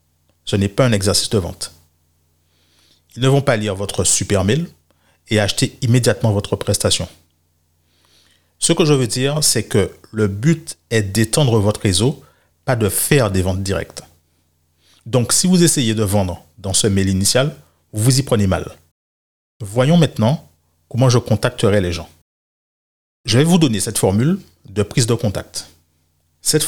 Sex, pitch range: male, 85-120 Hz